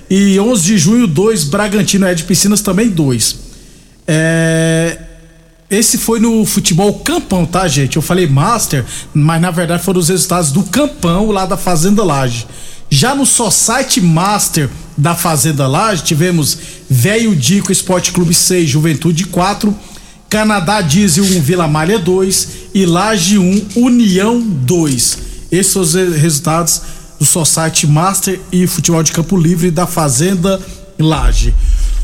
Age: 50-69